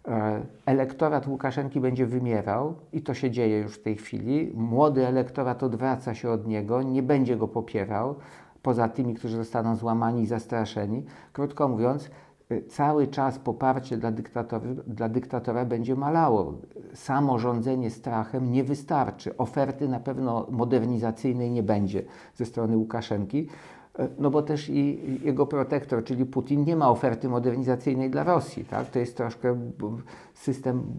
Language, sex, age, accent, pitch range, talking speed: Polish, male, 50-69, native, 115-135 Hz, 140 wpm